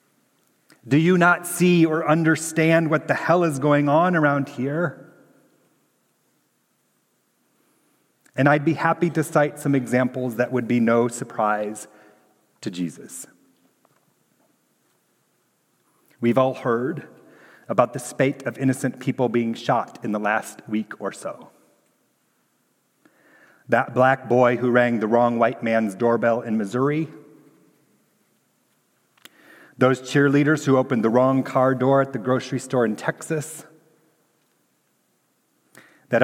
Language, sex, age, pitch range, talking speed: English, male, 40-59, 120-145 Hz, 120 wpm